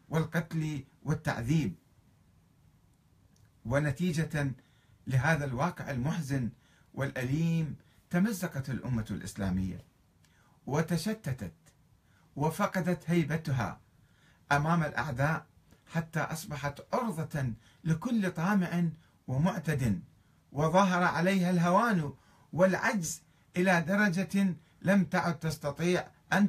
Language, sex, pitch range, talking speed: Arabic, male, 125-180 Hz, 70 wpm